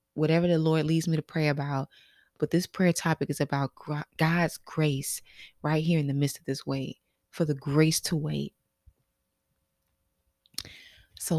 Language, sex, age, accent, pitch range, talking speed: English, female, 20-39, American, 155-195 Hz, 160 wpm